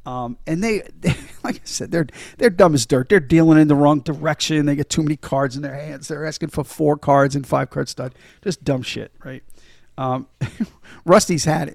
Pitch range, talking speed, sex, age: 135-160 Hz, 215 wpm, male, 50-69